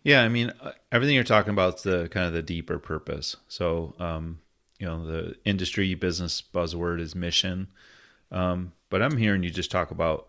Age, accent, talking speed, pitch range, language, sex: 30-49, American, 185 wpm, 85-100 Hz, English, male